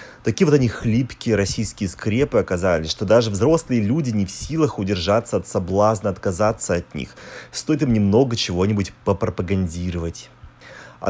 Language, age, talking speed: Russian, 30-49, 140 wpm